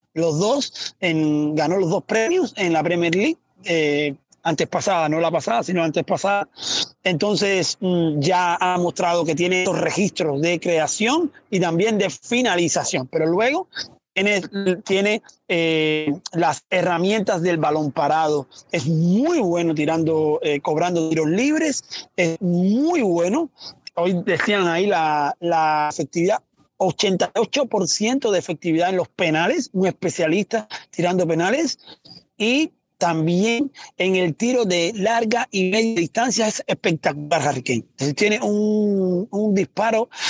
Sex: male